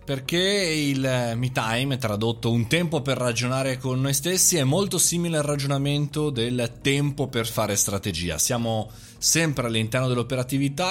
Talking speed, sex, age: 145 wpm, male, 20-39